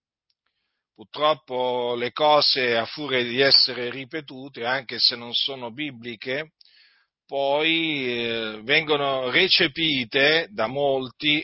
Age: 40-59